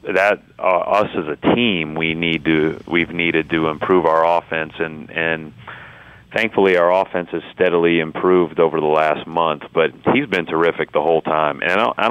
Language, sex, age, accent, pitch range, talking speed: English, male, 40-59, American, 75-85 Hz, 180 wpm